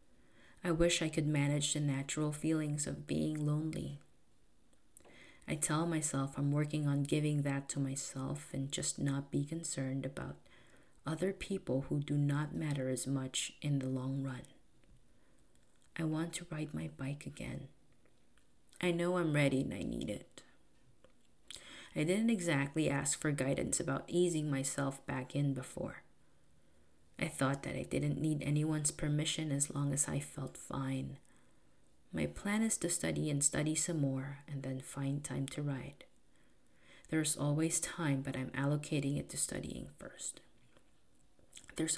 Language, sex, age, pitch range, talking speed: English, female, 20-39, 135-155 Hz, 150 wpm